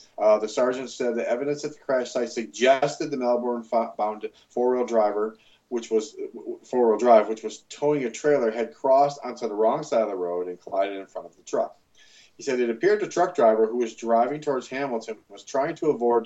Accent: American